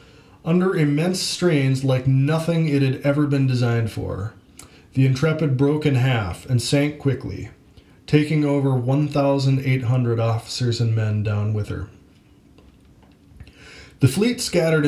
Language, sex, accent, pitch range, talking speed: English, male, American, 115-145 Hz, 125 wpm